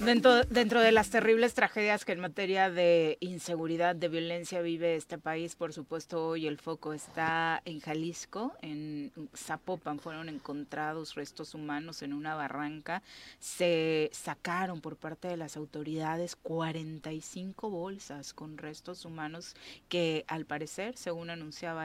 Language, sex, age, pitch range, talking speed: Spanish, female, 30-49, 150-170 Hz, 135 wpm